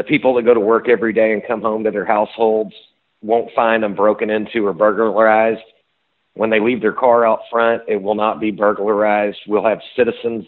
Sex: male